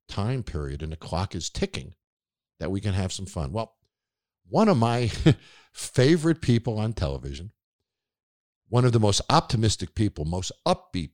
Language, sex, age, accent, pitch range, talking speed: English, male, 50-69, American, 85-145 Hz, 155 wpm